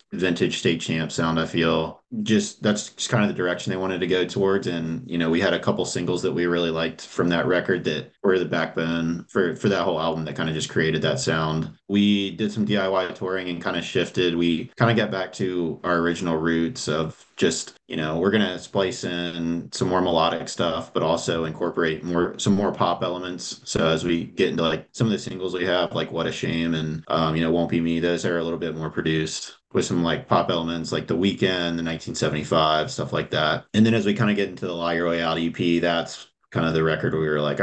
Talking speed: 240 wpm